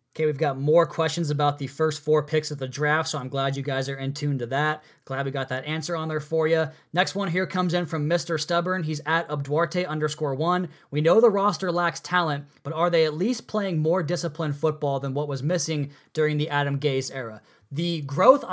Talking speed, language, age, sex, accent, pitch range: 230 wpm, English, 20-39, male, American, 145-170 Hz